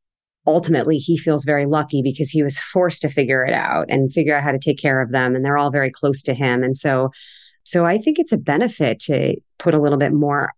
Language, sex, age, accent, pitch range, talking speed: English, female, 30-49, American, 135-155 Hz, 245 wpm